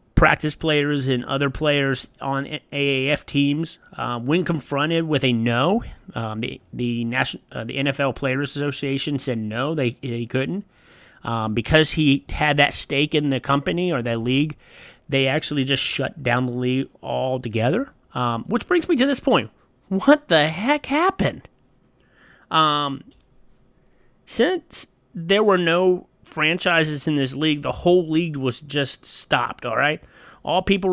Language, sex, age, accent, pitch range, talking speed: English, male, 30-49, American, 135-165 Hz, 150 wpm